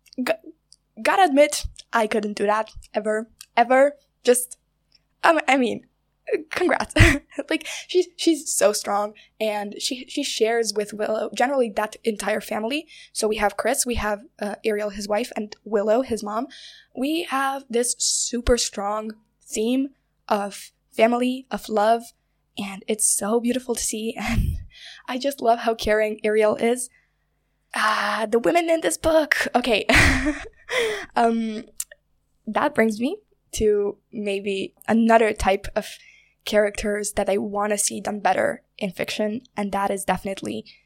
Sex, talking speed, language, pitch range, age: female, 140 wpm, English, 210-255 Hz, 10-29